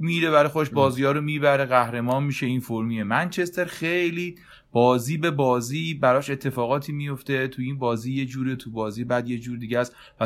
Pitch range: 110-145 Hz